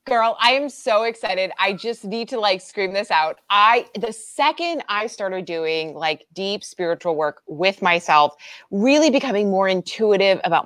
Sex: female